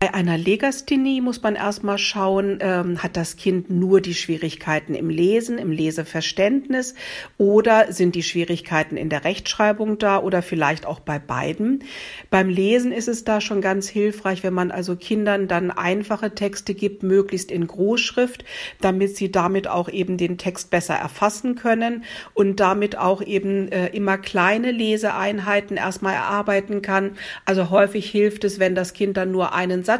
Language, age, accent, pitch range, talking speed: German, 50-69, German, 180-205 Hz, 160 wpm